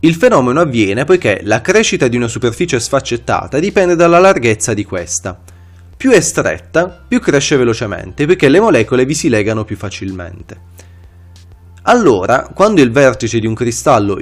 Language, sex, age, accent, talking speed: Italian, male, 20-39, native, 150 wpm